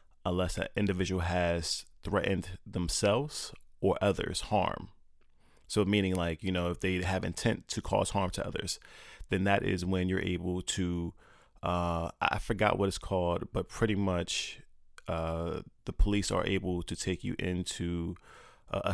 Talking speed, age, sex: 155 wpm, 20-39, male